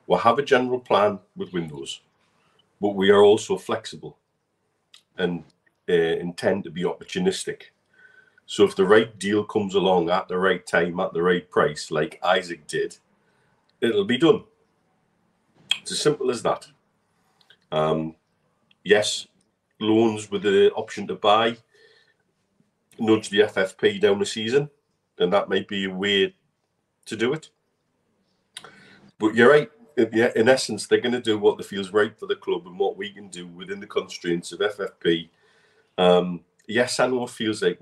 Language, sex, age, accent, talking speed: English, male, 40-59, British, 155 wpm